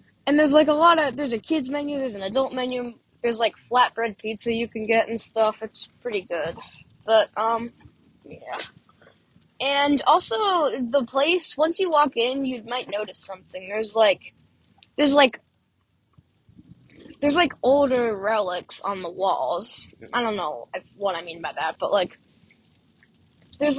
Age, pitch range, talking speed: 10-29, 200-265 Hz, 160 wpm